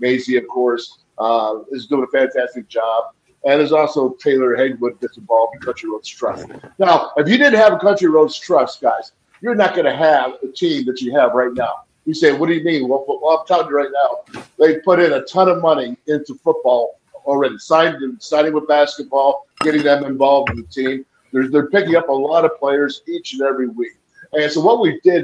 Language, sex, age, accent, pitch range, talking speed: English, male, 50-69, American, 135-195 Hz, 215 wpm